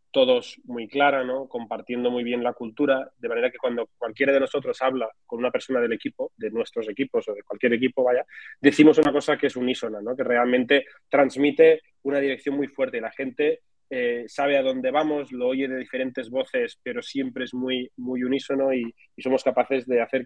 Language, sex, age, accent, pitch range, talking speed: Spanish, male, 20-39, Spanish, 125-160 Hz, 205 wpm